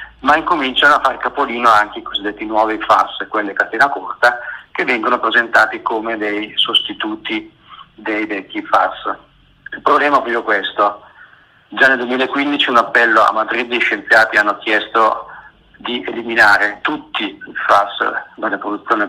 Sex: male